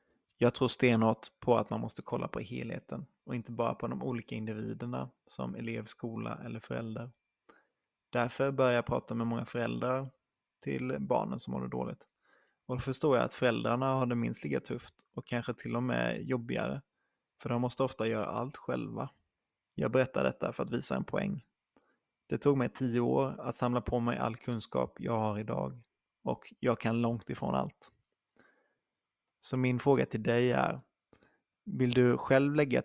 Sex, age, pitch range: male, 20-39, 110-125 Hz